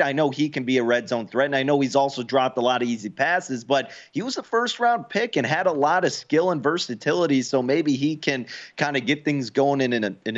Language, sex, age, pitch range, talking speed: English, male, 30-49, 110-145 Hz, 280 wpm